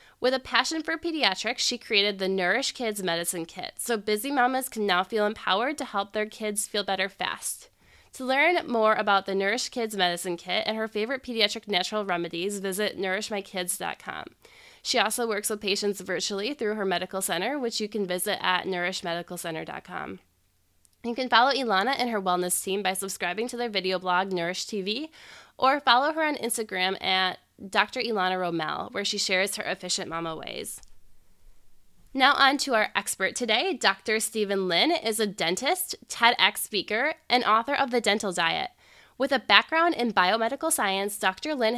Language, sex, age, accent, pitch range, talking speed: English, female, 20-39, American, 185-240 Hz, 170 wpm